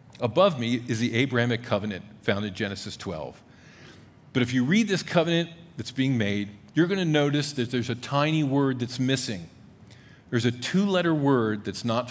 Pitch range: 110-140 Hz